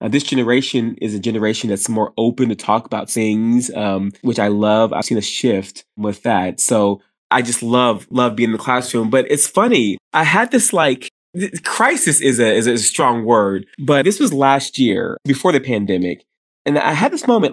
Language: English